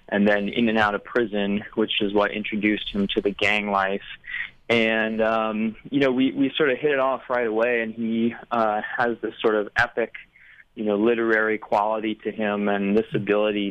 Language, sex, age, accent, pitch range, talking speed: English, male, 20-39, American, 100-110 Hz, 200 wpm